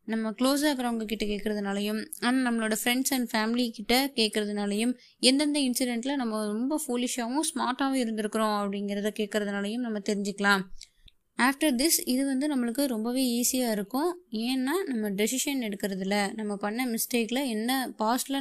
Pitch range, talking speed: 210-270 Hz, 125 wpm